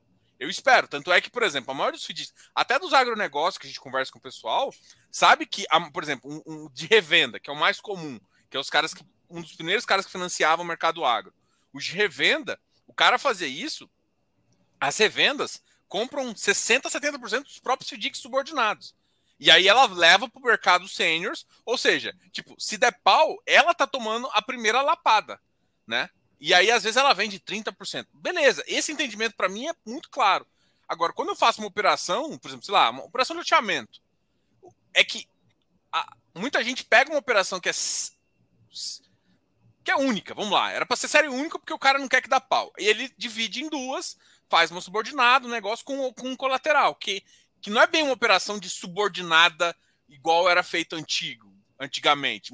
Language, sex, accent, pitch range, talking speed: Portuguese, male, Brazilian, 175-275 Hz, 195 wpm